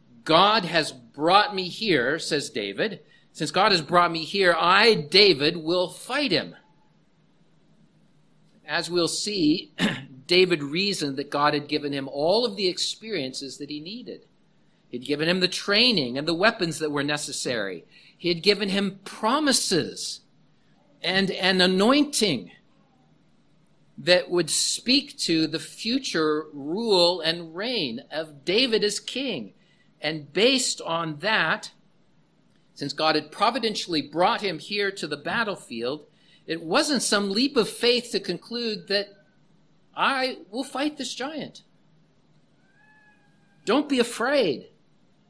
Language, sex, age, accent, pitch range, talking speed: English, male, 50-69, American, 160-215 Hz, 130 wpm